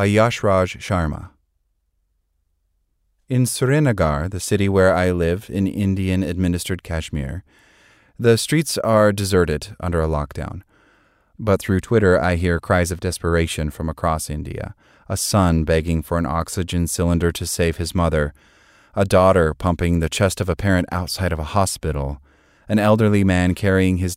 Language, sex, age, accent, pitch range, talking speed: English, male, 30-49, American, 85-105 Hz, 145 wpm